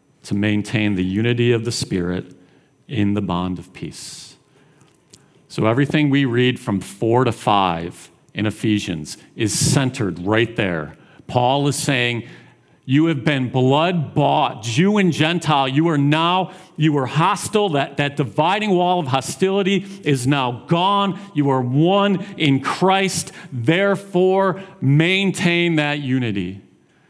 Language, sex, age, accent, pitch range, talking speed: English, male, 50-69, American, 110-155 Hz, 135 wpm